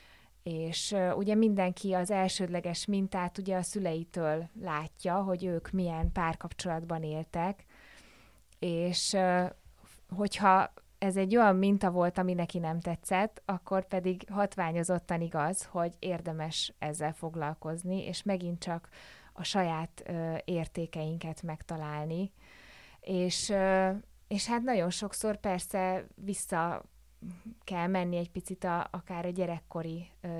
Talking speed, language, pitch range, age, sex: 110 wpm, Hungarian, 165-190 Hz, 20-39, female